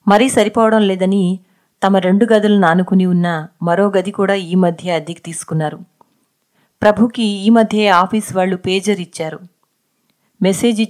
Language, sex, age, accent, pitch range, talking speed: Telugu, female, 30-49, native, 180-220 Hz, 125 wpm